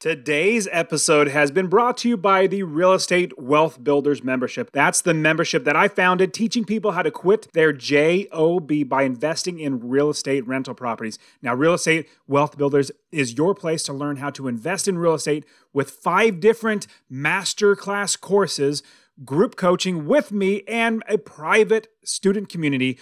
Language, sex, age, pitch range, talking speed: English, male, 30-49, 145-200 Hz, 165 wpm